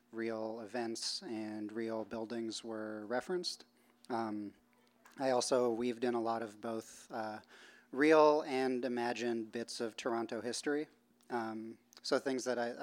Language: English